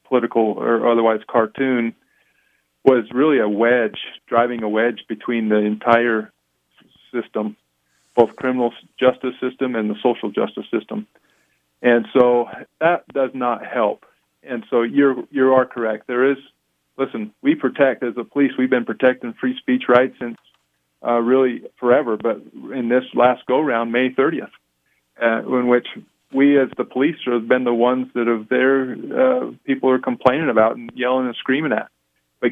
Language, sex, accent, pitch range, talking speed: English, male, American, 115-130 Hz, 160 wpm